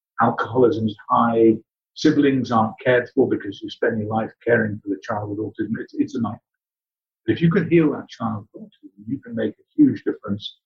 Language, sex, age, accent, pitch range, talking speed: English, male, 50-69, British, 105-130 Hz, 205 wpm